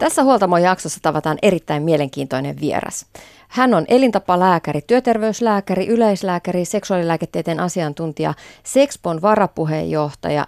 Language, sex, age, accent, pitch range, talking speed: Finnish, female, 30-49, native, 150-210 Hz, 90 wpm